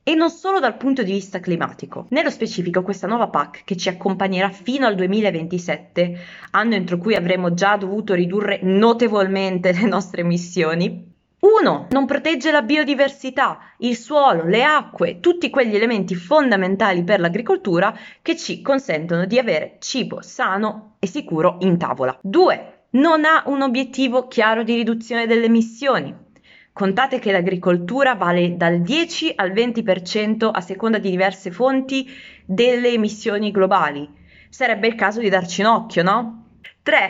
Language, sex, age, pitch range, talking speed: Italian, female, 20-39, 185-255 Hz, 145 wpm